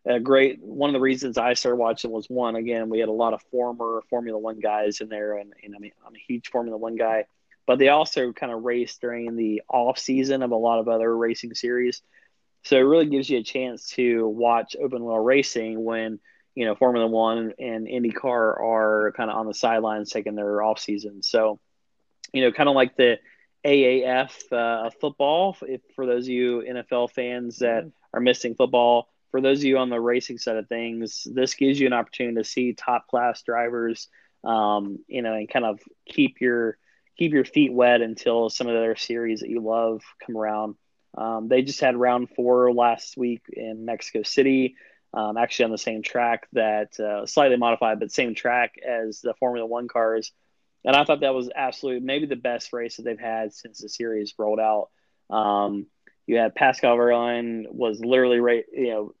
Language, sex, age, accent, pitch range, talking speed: English, male, 30-49, American, 110-125 Hz, 205 wpm